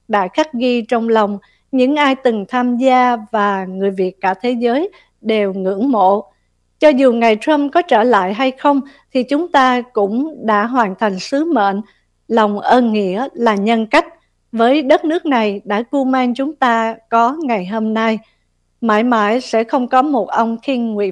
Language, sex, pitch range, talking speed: Vietnamese, female, 215-270 Hz, 185 wpm